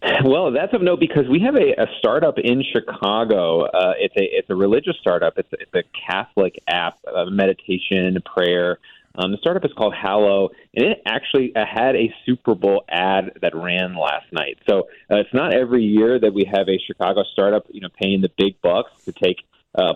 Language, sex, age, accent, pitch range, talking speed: English, male, 30-49, American, 100-130 Hz, 200 wpm